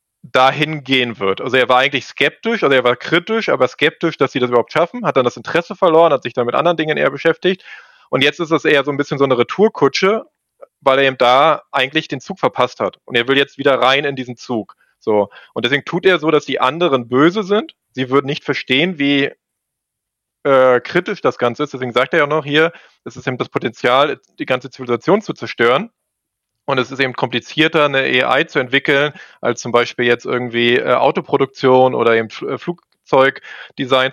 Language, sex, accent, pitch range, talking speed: German, male, German, 125-160 Hz, 210 wpm